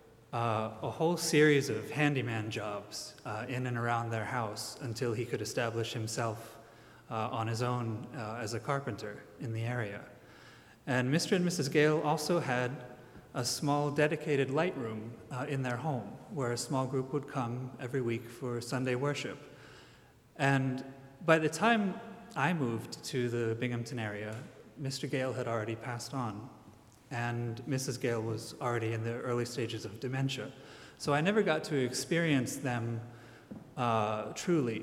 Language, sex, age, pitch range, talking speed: English, male, 30-49, 115-140 Hz, 160 wpm